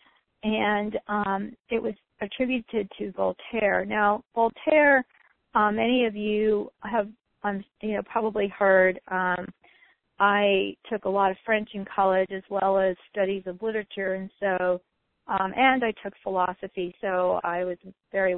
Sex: female